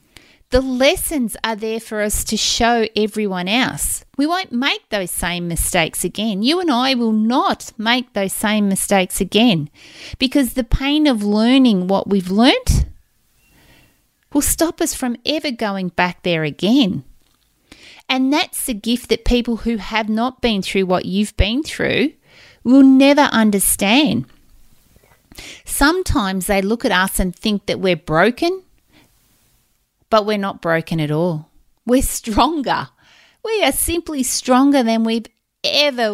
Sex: female